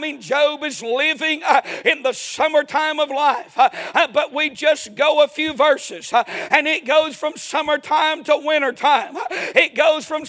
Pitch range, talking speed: 295-345 Hz, 155 wpm